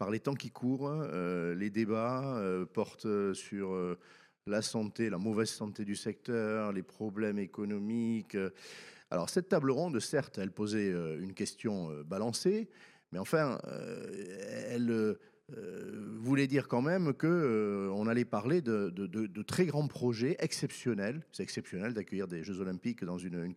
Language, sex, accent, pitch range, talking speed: French, male, French, 100-140 Hz, 165 wpm